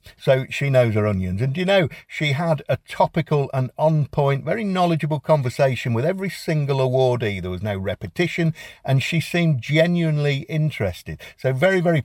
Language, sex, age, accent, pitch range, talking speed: English, male, 50-69, British, 105-155 Hz, 170 wpm